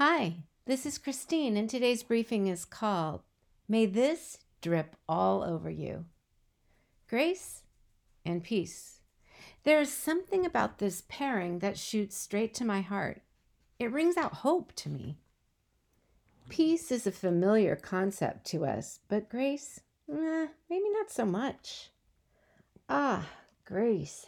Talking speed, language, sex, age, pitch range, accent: 130 wpm, English, female, 50-69, 185-275 Hz, American